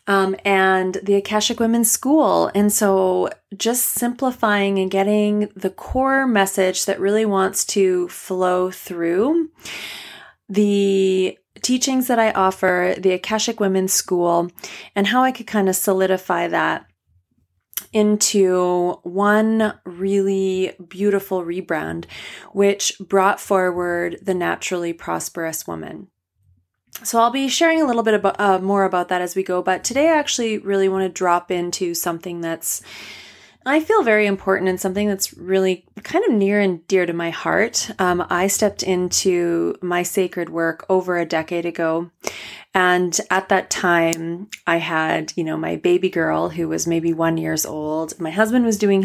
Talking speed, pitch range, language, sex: 150 wpm, 175-210 Hz, English, female